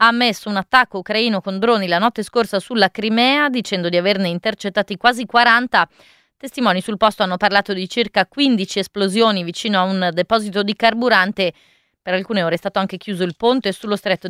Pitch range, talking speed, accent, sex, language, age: 195-230 Hz, 185 wpm, native, female, Italian, 30-49